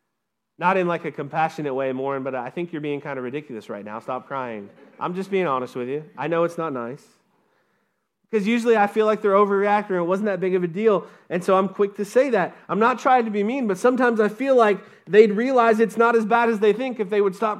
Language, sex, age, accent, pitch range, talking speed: English, male, 30-49, American, 165-220 Hz, 260 wpm